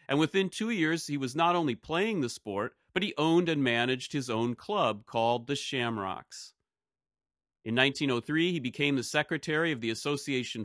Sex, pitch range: male, 120-150 Hz